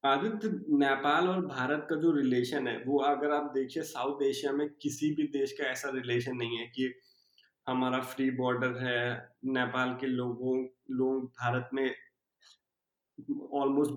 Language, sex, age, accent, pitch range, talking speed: Hindi, male, 20-39, native, 130-150 Hz, 150 wpm